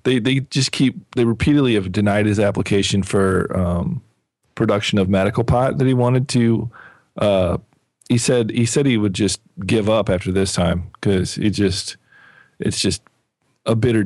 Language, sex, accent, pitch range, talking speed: English, male, American, 95-115 Hz, 170 wpm